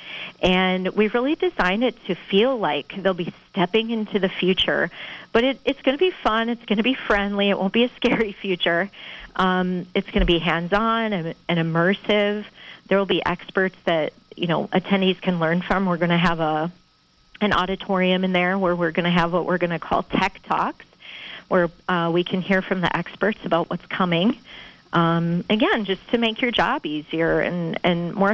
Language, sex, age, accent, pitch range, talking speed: English, female, 40-59, American, 175-215 Hz, 200 wpm